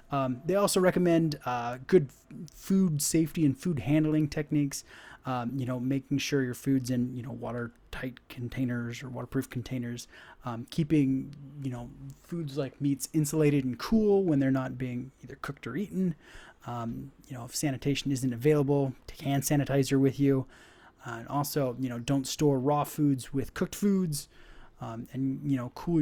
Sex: male